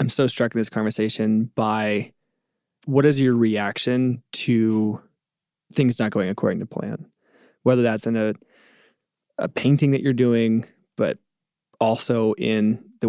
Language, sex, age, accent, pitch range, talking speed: English, male, 20-39, American, 110-130 Hz, 140 wpm